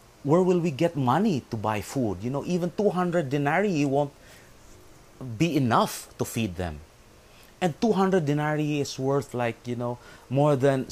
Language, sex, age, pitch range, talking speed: English, male, 30-49, 95-145 Hz, 160 wpm